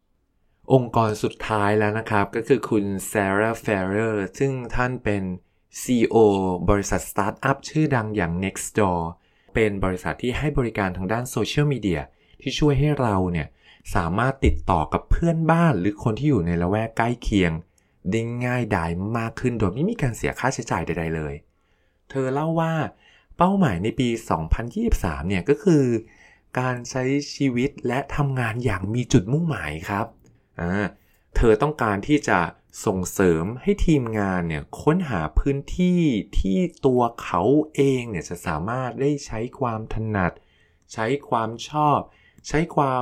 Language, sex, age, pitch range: Thai, male, 20-39, 90-130 Hz